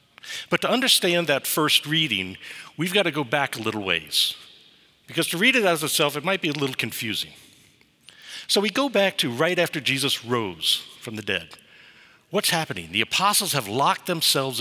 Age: 60-79